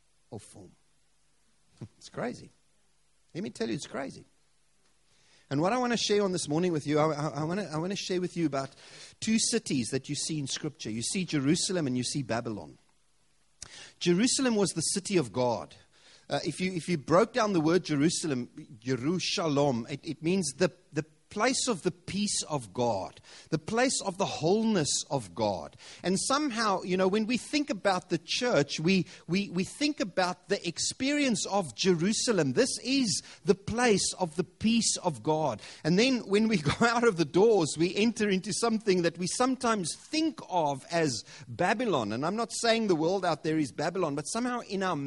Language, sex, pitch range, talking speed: English, male, 150-215 Hz, 190 wpm